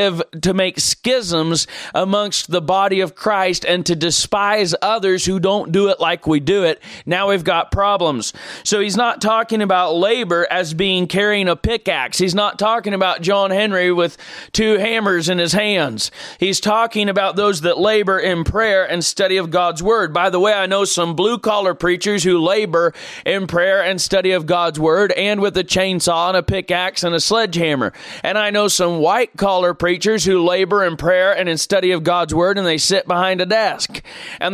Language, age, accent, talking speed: English, 30-49, American, 195 wpm